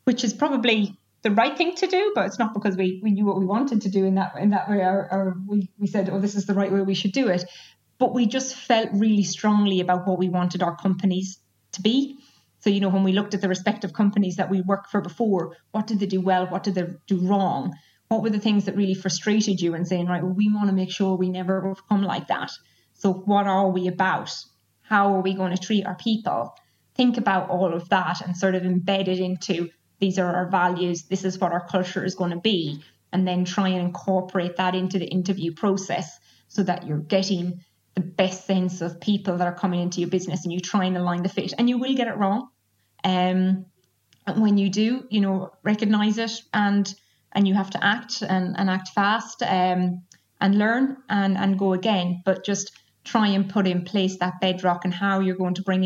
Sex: female